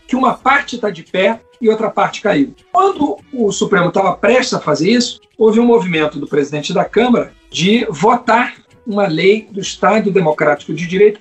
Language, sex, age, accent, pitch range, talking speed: Portuguese, male, 50-69, Brazilian, 160-230 Hz, 180 wpm